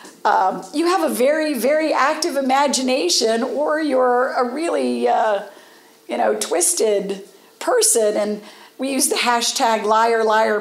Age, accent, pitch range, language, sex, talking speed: 50-69, American, 210-335 Hz, English, female, 135 wpm